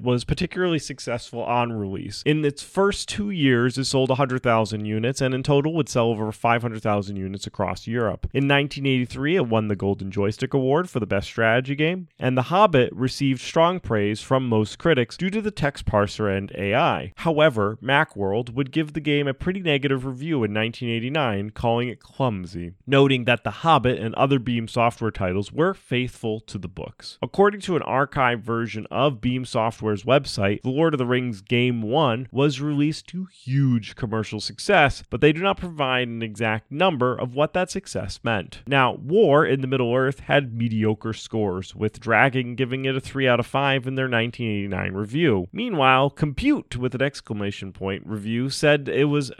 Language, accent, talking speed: English, American, 180 wpm